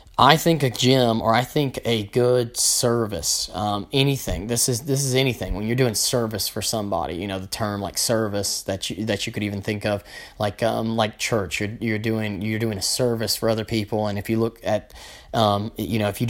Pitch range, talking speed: 105-125 Hz, 225 wpm